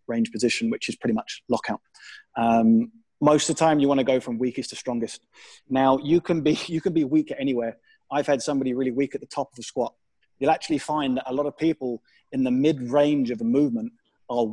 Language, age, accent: English, 30-49, British